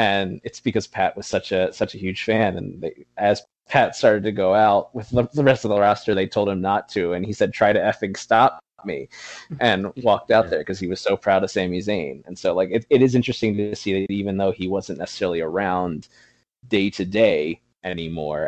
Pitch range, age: 90-115 Hz, 20-39